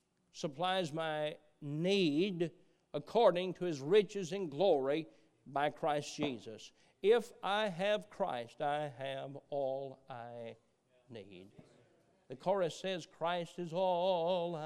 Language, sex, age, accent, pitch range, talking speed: English, male, 50-69, American, 145-190 Hz, 110 wpm